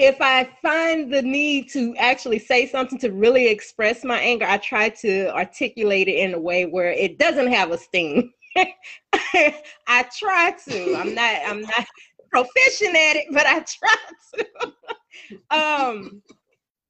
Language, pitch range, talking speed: English, 185-300 Hz, 155 wpm